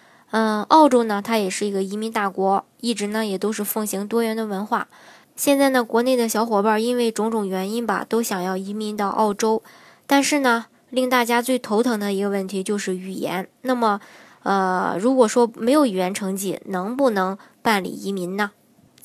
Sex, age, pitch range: male, 20-39, 200-240 Hz